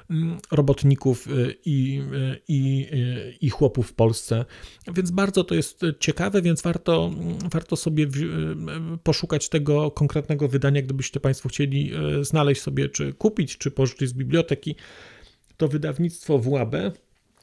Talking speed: 115 wpm